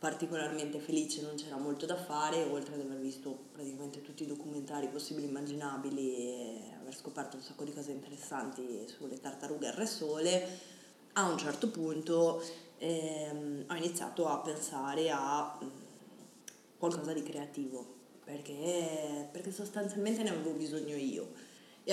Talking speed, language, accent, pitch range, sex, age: 140 wpm, Italian, native, 145-170 Hz, female, 20-39